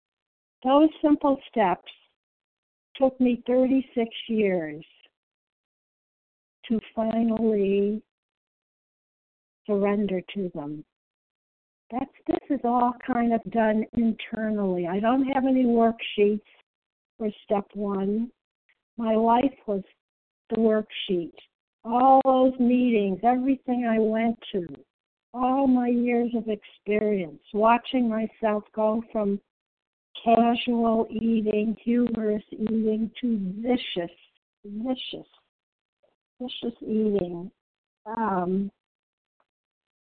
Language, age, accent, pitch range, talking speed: English, 60-79, American, 205-240 Hz, 90 wpm